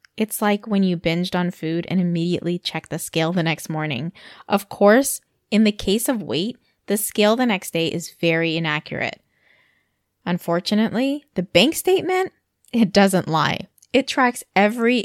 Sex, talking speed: female, 160 wpm